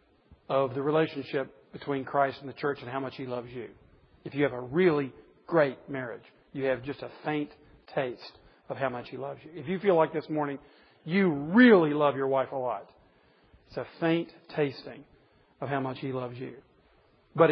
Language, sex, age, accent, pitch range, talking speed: English, male, 40-59, American, 135-170 Hz, 195 wpm